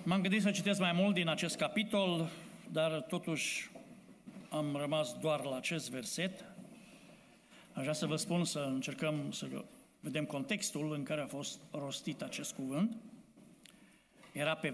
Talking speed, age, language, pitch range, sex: 145 wpm, 60-79, Romanian, 150-200 Hz, male